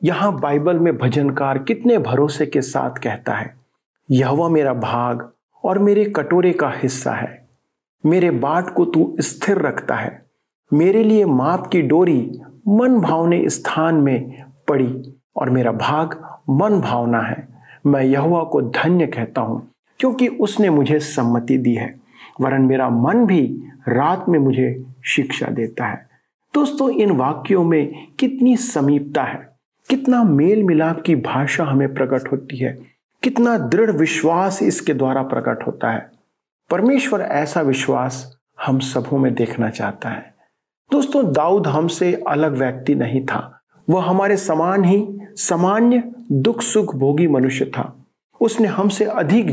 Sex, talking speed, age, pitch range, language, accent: male, 145 wpm, 50-69, 135-200 Hz, Hindi, native